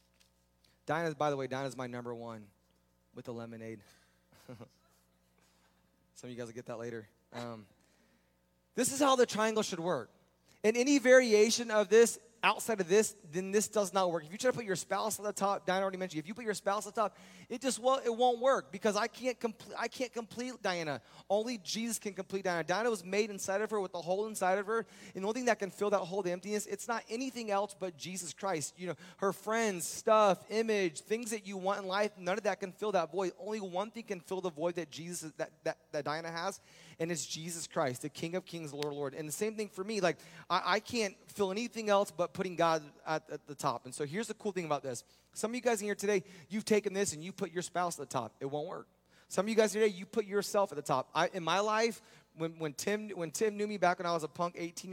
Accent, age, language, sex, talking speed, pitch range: American, 20-39, English, male, 255 wpm, 155-215 Hz